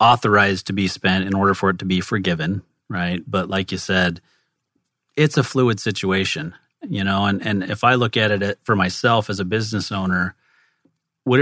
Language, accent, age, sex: English, American, 30-49, male